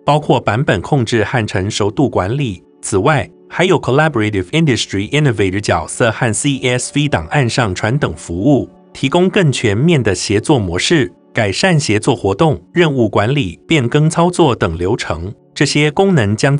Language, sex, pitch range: Chinese, male, 110-145 Hz